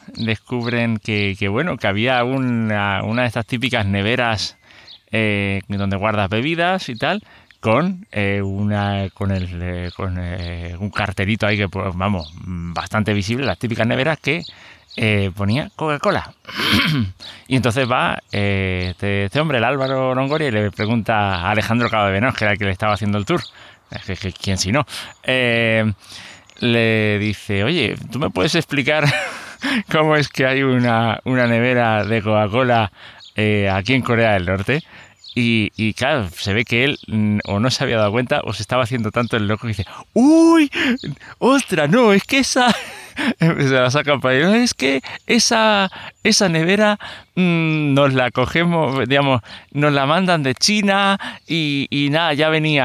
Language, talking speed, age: Spanish, 170 wpm, 30-49